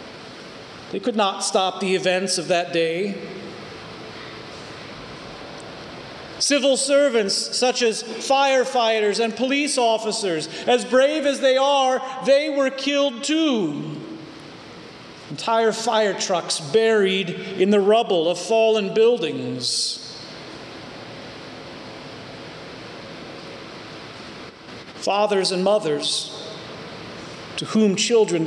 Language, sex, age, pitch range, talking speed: English, male, 40-59, 175-260 Hz, 90 wpm